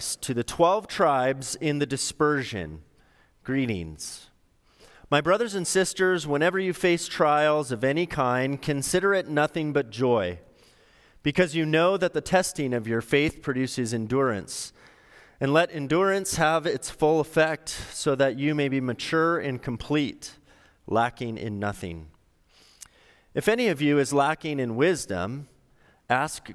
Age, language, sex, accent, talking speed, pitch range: 30-49, English, male, American, 140 wpm, 115-155 Hz